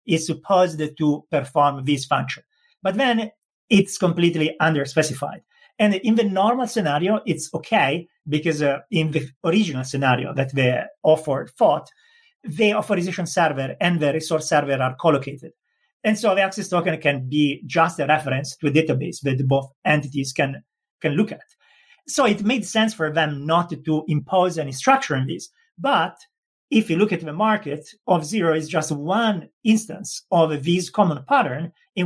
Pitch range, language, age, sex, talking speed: 145-215 Hz, English, 40-59, male, 165 wpm